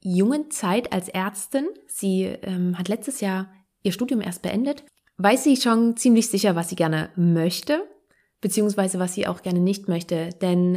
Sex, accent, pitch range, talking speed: female, German, 185-225 Hz, 165 wpm